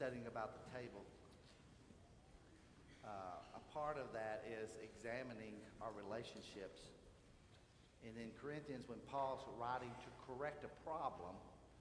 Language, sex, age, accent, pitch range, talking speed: English, male, 50-69, American, 110-140 Hz, 110 wpm